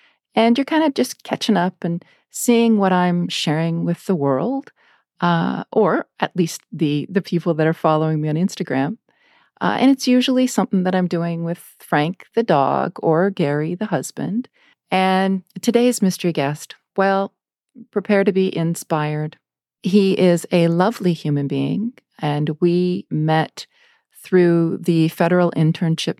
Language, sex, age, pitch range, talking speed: English, female, 40-59, 160-195 Hz, 150 wpm